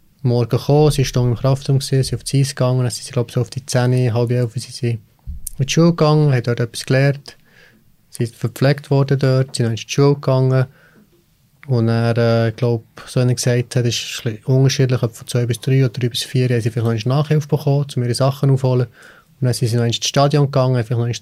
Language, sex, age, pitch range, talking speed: German, male, 30-49, 120-135 Hz, 220 wpm